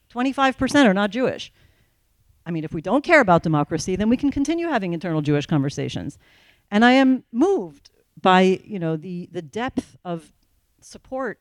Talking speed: 170 wpm